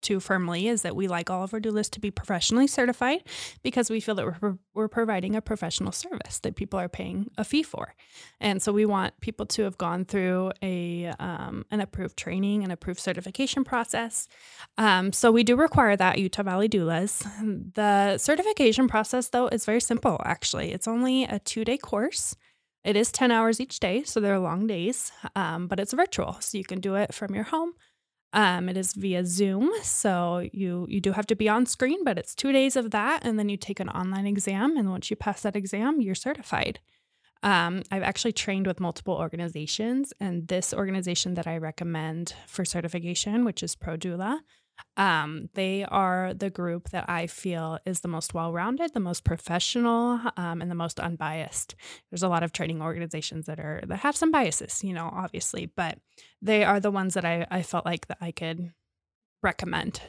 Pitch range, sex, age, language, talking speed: 180-230 Hz, female, 20-39, English, 195 wpm